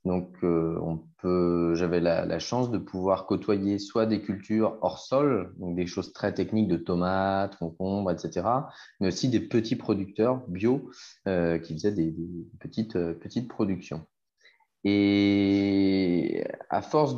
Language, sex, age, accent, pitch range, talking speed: French, male, 30-49, French, 85-110 Hz, 150 wpm